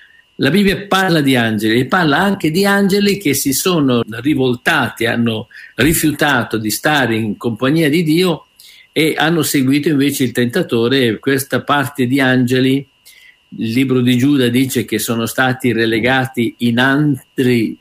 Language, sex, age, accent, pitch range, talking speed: Italian, male, 50-69, native, 120-145 Hz, 145 wpm